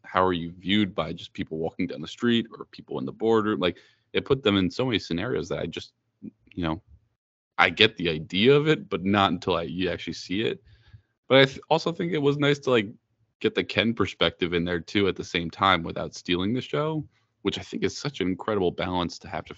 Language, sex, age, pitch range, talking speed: English, male, 20-39, 85-110 Hz, 235 wpm